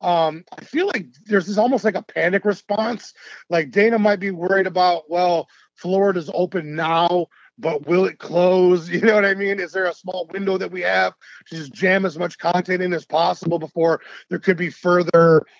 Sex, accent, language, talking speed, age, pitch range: male, American, English, 200 wpm, 30-49, 170-210 Hz